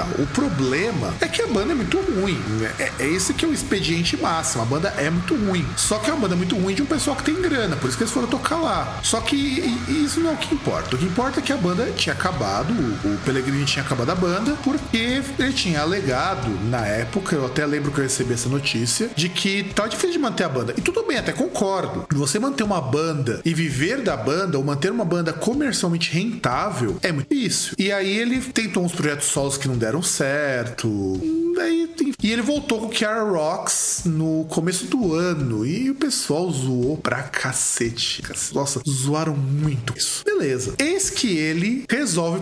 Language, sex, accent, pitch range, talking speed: Portuguese, male, Brazilian, 150-240 Hz, 210 wpm